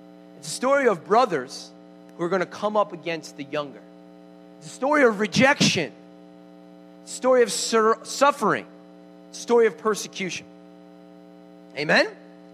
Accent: American